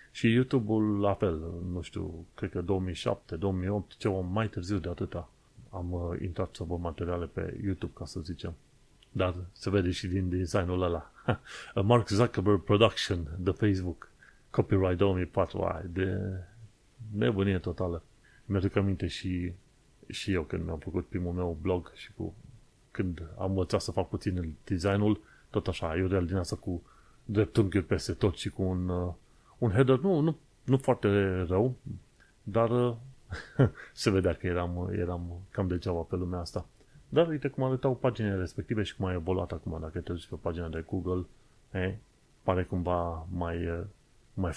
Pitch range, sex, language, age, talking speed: 90-110 Hz, male, Romanian, 30-49, 160 wpm